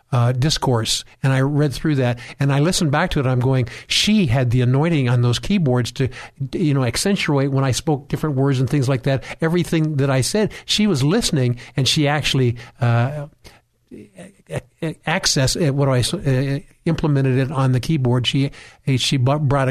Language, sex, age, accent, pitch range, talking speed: English, male, 50-69, American, 130-150 Hz, 175 wpm